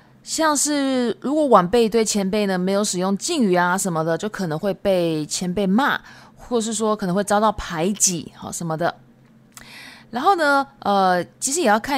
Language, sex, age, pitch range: Japanese, female, 20-39, 180-230 Hz